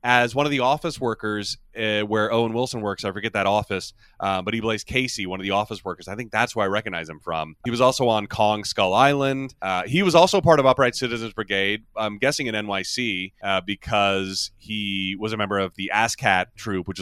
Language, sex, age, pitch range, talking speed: English, male, 30-49, 95-130 Hz, 225 wpm